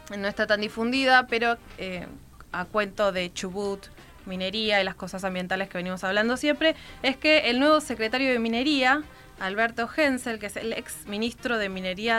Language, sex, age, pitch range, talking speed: Spanish, female, 20-39, 200-265 Hz, 170 wpm